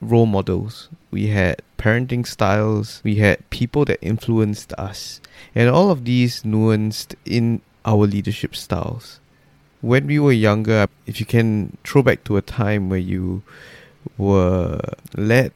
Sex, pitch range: male, 105-135 Hz